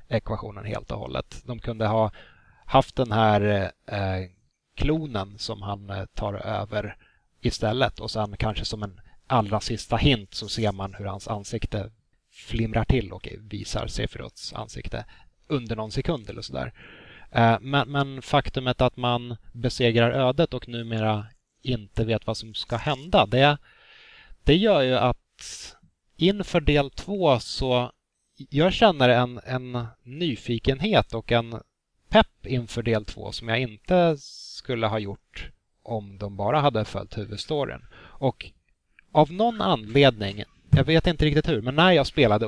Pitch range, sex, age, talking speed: 105-135 Hz, male, 30-49, 140 wpm